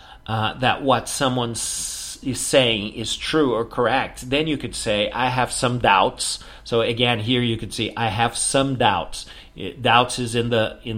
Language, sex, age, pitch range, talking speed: English, male, 40-59, 105-125 Hz, 180 wpm